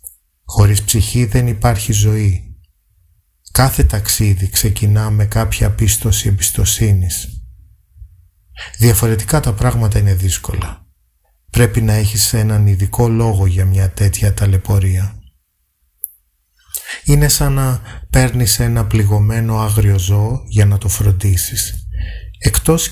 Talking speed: 105 wpm